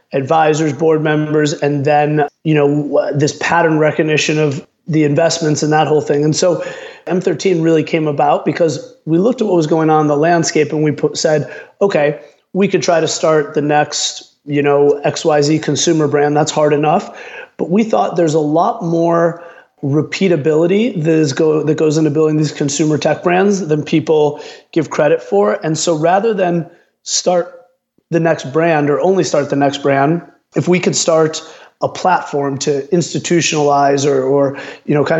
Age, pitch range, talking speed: 30-49, 150-165 Hz, 180 wpm